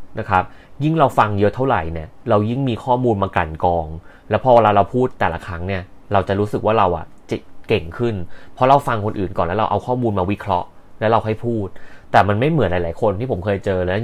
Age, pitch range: 20-39, 90-115 Hz